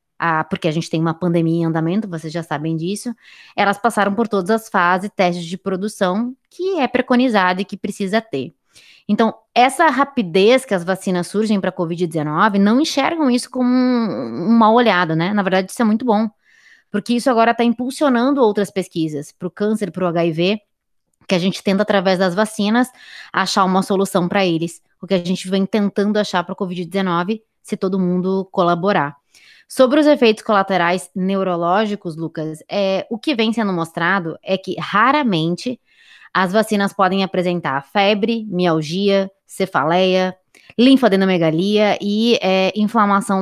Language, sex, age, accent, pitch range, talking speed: Portuguese, female, 20-39, Brazilian, 180-225 Hz, 160 wpm